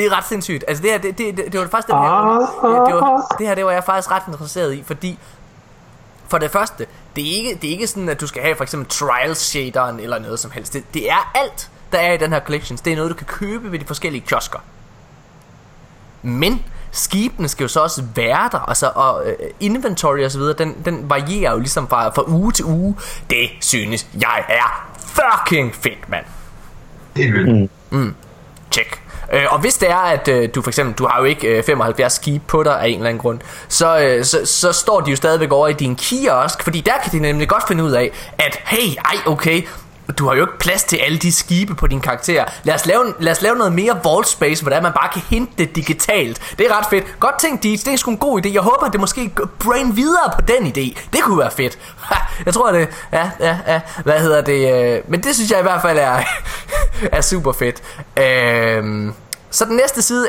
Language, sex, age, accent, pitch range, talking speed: Danish, male, 20-39, native, 135-200 Hz, 225 wpm